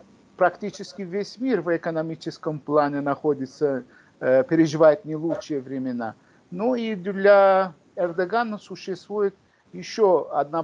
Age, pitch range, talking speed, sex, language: 50-69, 160-200 Hz, 100 wpm, male, Russian